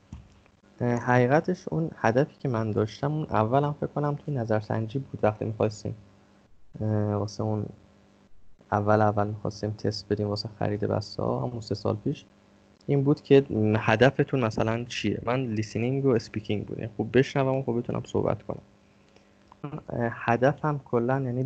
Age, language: 20-39, Persian